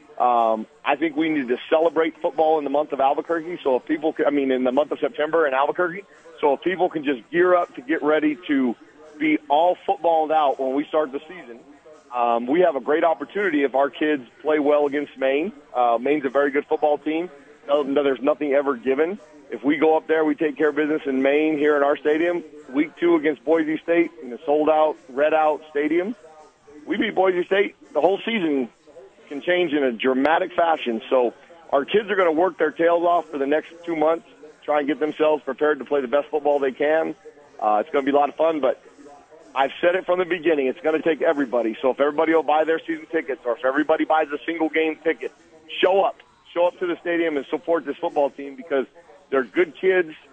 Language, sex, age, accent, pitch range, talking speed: English, male, 40-59, American, 140-165 Hz, 230 wpm